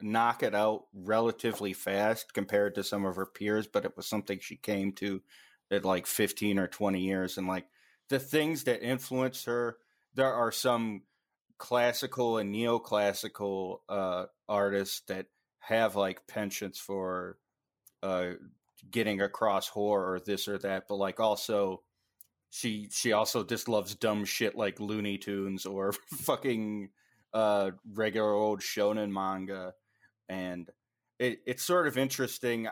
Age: 30-49